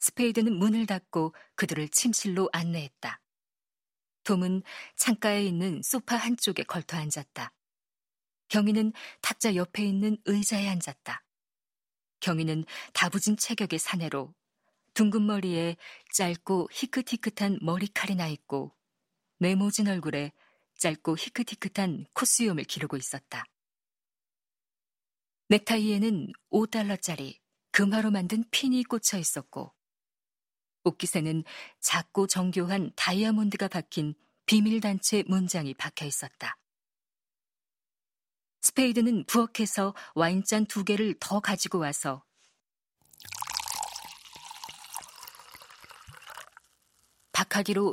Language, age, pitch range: Korean, 40-59, 170-220 Hz